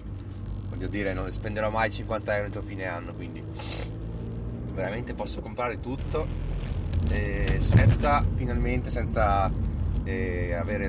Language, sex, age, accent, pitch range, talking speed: Italian, male, 30-49, native, 85-110 Hz, 110 wpm